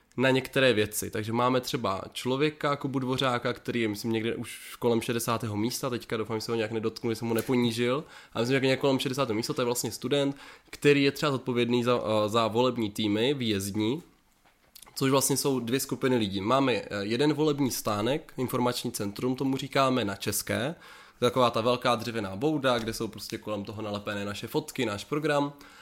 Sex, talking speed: male, 185 wpm